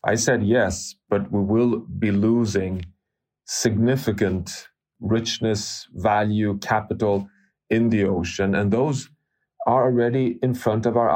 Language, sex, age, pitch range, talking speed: English, male, 30-49, 100-120 Hz, 125 wpm